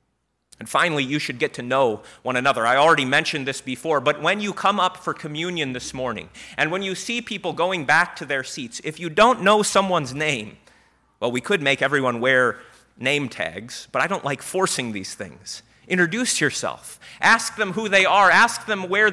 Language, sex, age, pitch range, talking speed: English, male, 30-49, 135-195 Hz, 200 wpm